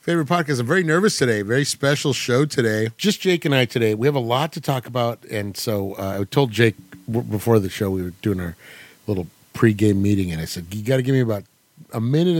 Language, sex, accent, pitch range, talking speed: English, male, American, 100-135 Hz, 235 wpm